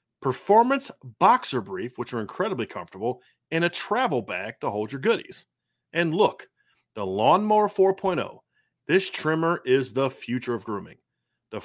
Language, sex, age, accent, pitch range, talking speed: English, male, 30-49, American, 120-175 Hz, 145 wpm